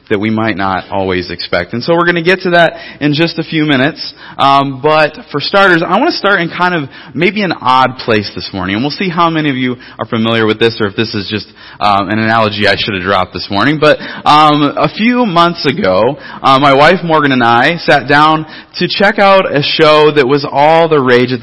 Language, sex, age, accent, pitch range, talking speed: English, male, 30-49, American, 120-170 Hz, 240 wpm